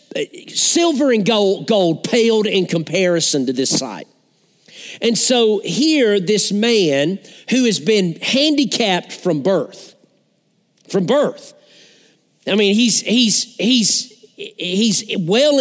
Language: English